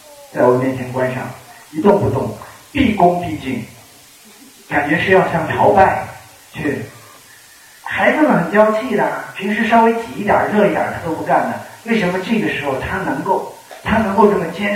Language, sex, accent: Chinese, male, native